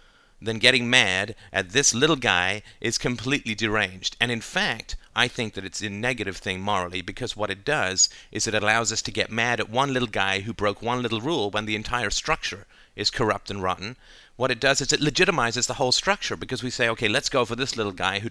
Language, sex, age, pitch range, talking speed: English, male, 40-59, 95-120 Hz, 225 wpm